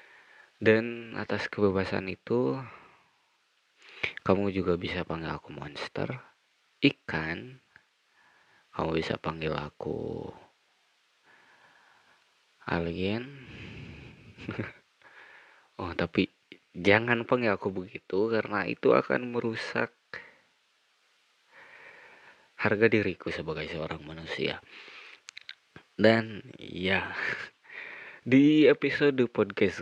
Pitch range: 90-125 Hz